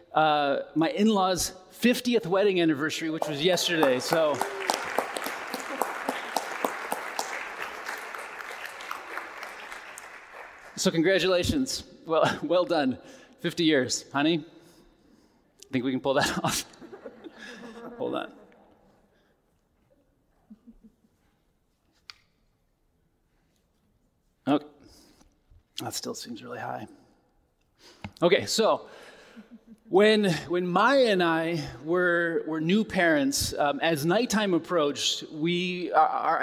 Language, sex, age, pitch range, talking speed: English, male, 30-49, 155-220 Hz, 85 wpm